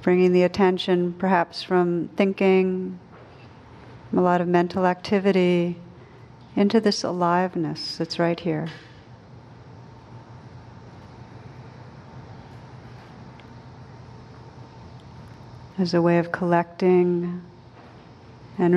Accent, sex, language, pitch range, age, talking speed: American, female, English, 130-190 Hz, 50-69, 75 wpm